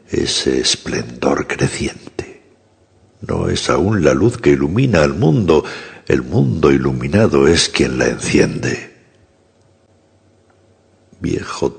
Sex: male